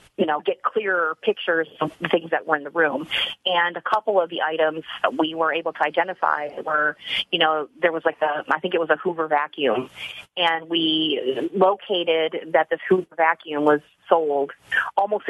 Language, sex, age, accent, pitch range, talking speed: English, female, 30-49, American, 155-190 Hz, 190 wpm